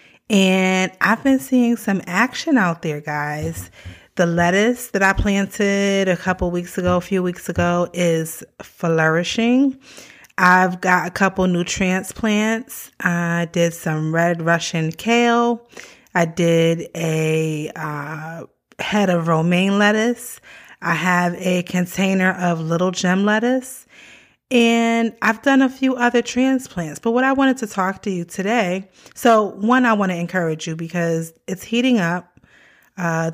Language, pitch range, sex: English, 170-220 Hz, female